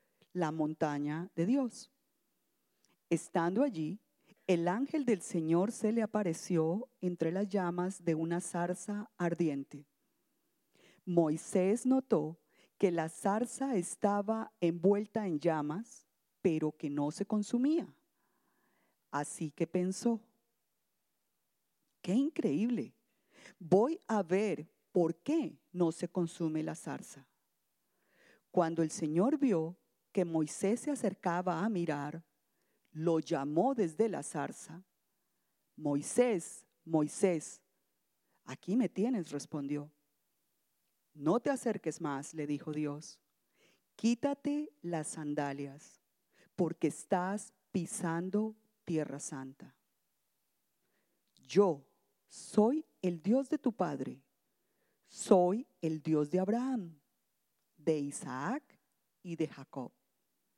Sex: female